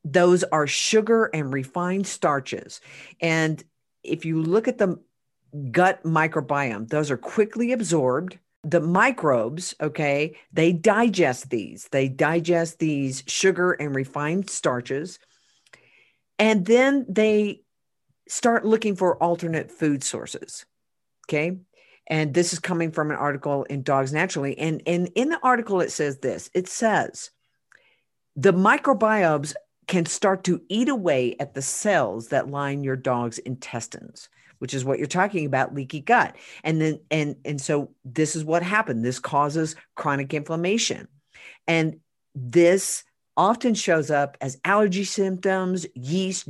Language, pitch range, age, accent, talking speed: English, 140-190 Hz, 50-69, American, 135 wpm